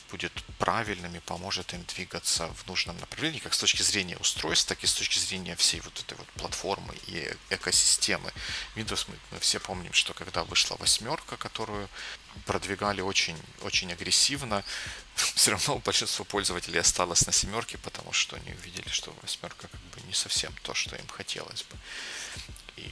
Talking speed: 155 wpm